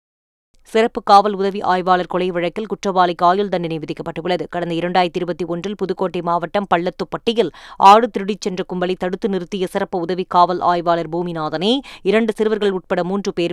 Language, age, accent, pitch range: Tamil, 20-39, native, 180-210 Hz